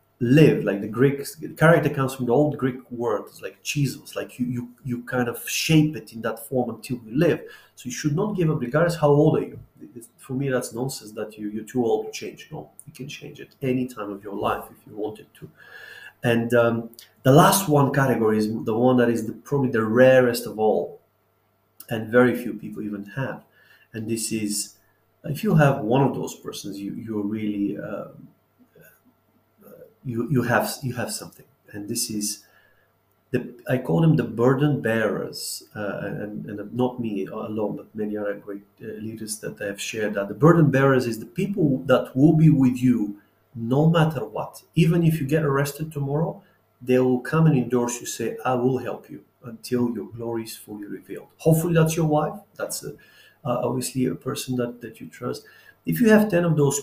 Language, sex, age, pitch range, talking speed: English, male, 30-49, 110-140 Hz, 200 wpm